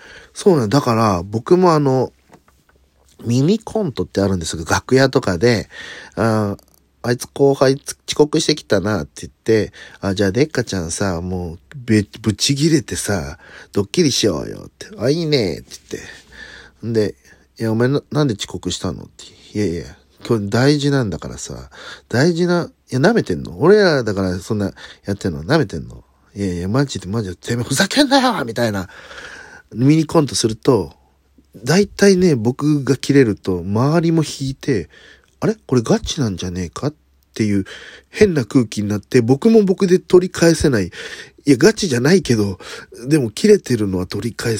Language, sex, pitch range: Japanese, male, 95-150 Hz